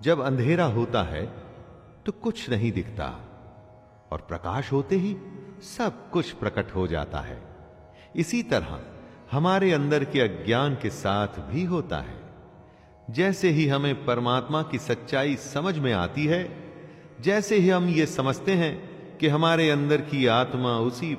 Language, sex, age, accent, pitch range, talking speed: Hindi, male, 40-59, native, 115-180 Hz, 145 wpm